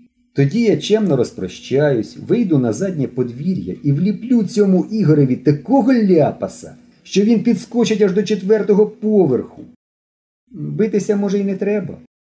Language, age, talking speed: Ukrainian, 40-59, 130 wpm